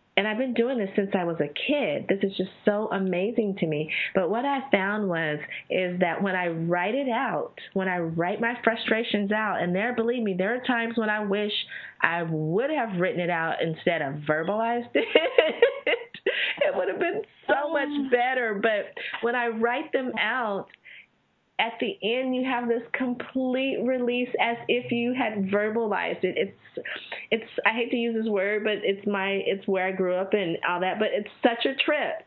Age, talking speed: 30-49, 195 wpm